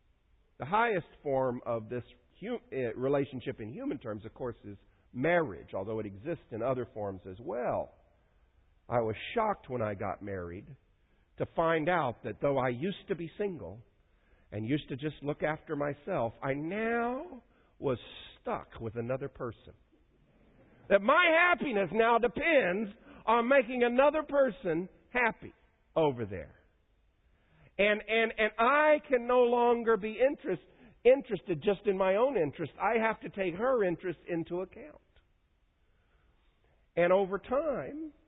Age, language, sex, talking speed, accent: 50-69, English, male, 140 wpm, American